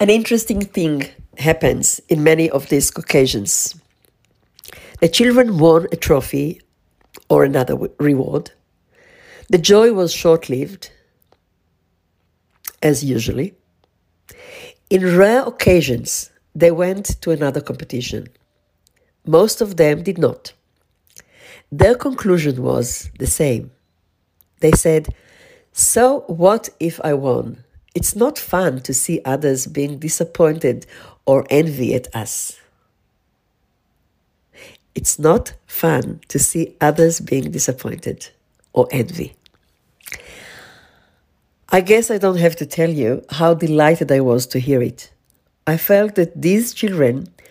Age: 50-69